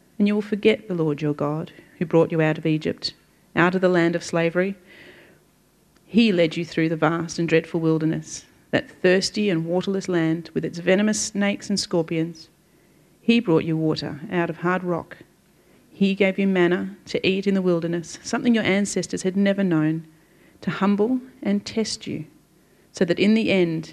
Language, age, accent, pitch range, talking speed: English, 40-59, Australian, 165-205 Hz, 185 wpm